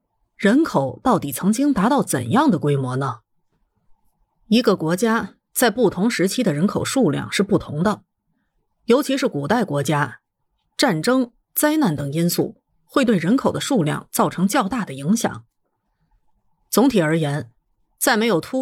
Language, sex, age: Chinese, female, 30-49